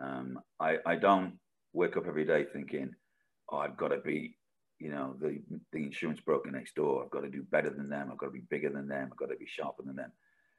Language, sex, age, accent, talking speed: English, male, 50-69, British, 245 wpm